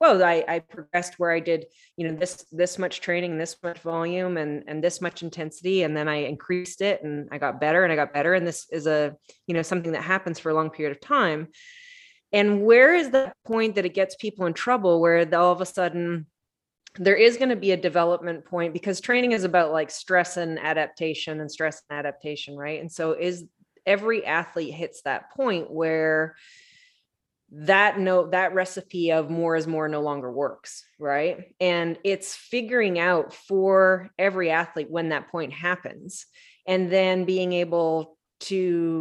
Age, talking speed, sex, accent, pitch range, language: 20-39, 190 wpm, female, American, 160-195 Hz, English